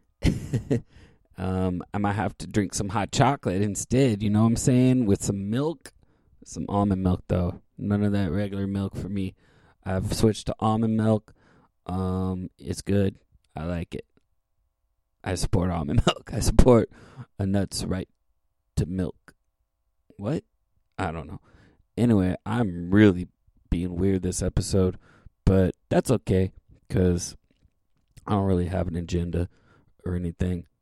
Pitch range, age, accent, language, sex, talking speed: 95-125 Hz, 20-39, American, English, male, 145 wpm